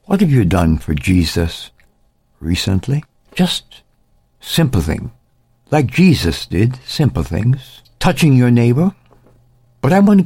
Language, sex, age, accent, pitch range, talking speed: English, male, 60-79, American, 100-125 Hz, 130 wpm